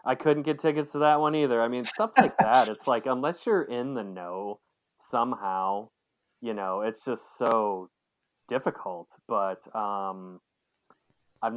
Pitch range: 95-120 Hz